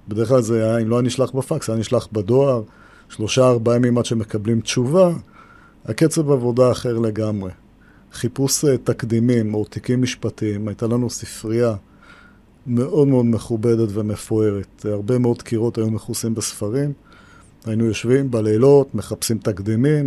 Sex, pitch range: male, 110-125 Hz